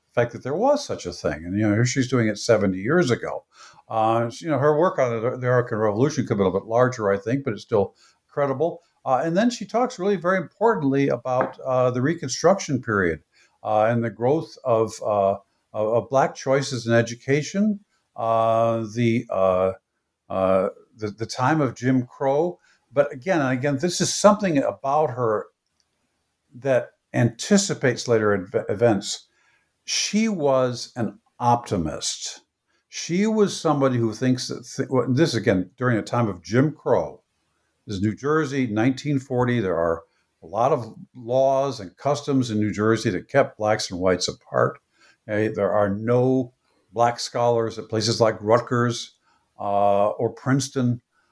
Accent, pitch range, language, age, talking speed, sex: American, 110-140 Hz, English, 50-69, 160 wpm, male